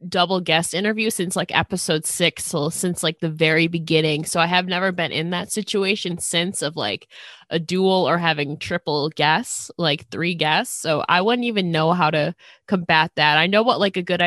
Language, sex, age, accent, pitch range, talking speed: English, female, 20-39, American, 160-195 Hz, 200 wpm